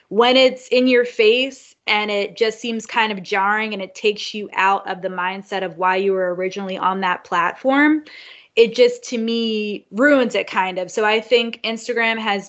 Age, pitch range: 20-39, 195-235 Hz